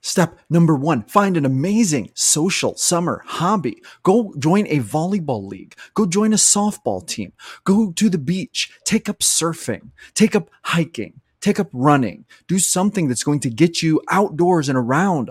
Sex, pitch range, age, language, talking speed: male, 125-175 Hz, 30-49, English, 165 wpm